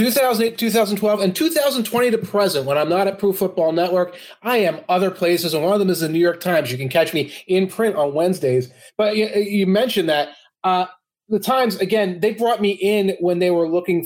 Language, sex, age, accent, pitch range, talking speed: English, male, 30-49, American, 145-195 Hz, 220 wpm